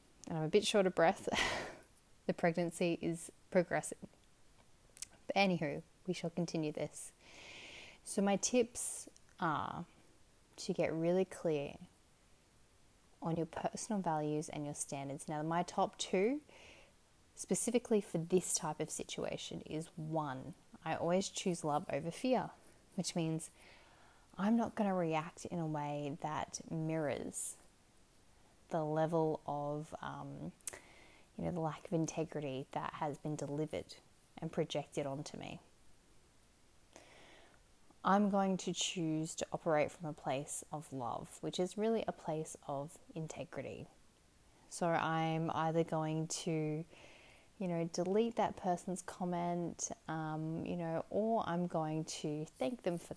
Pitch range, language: 150-180 Hz, English